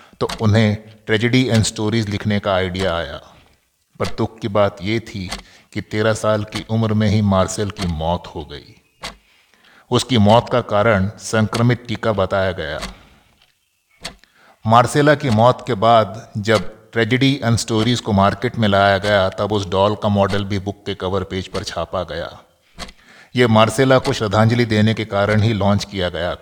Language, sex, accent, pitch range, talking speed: Hindi, male, native, 100-115 Hz, 165 wpm